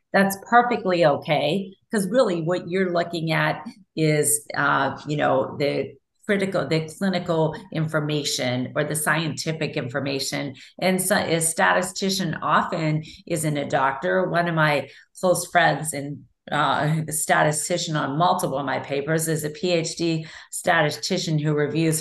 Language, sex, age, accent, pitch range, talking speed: English, female, 40-59, American, 150-185 Hz, 135 wpm